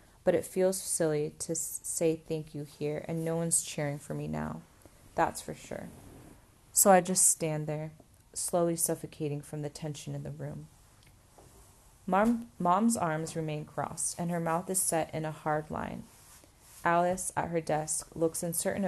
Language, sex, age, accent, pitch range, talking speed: English, female, 30-49, American, 145-175 Hz, 160 wpm